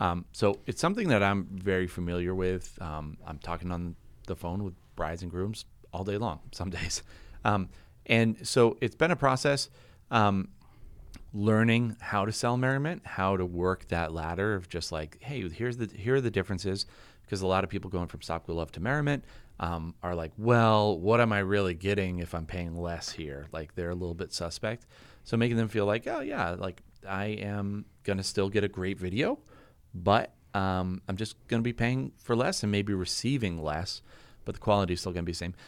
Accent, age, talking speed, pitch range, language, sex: American, 30-49, 205 wpm, 85-115 Hz, English, male